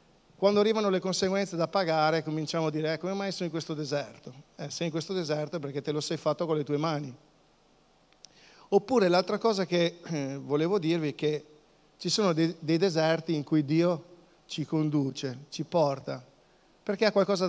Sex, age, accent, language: male, 50-69, native, Italian